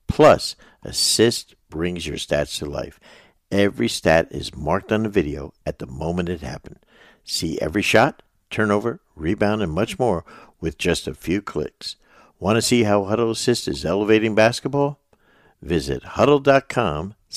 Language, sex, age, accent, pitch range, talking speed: English, male, 60-79, American, 80-105 Hz, 150 wpm